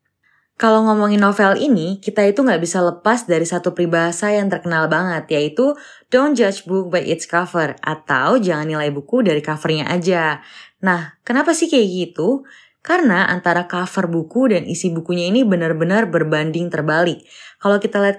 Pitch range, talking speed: 160-215 Hz, 160 wpm